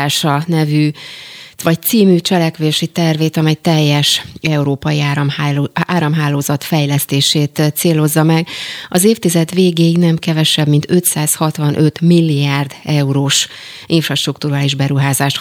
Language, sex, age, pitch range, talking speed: Hungarian, female, 30-49, 145-165 Hz, 90 wpm